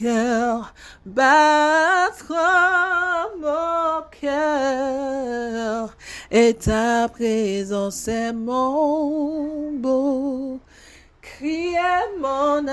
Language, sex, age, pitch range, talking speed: English, female, 30-49, 225-295 Hz, 50 wpm